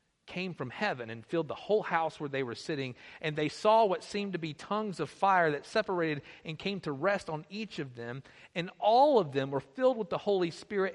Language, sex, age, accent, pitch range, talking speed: English, male, 50-69, American, 155-225 Hz, 230 wpm